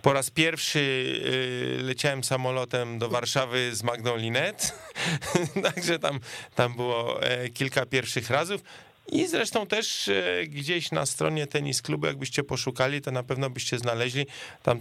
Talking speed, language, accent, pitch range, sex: 125 wpm, Polish, native, 115-135 Hz, male